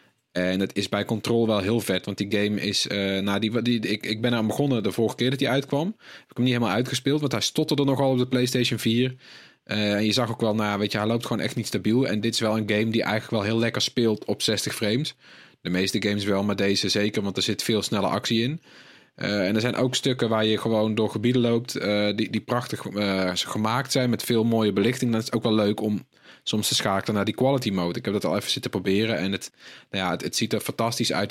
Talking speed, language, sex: 270 wpm, Dutch, male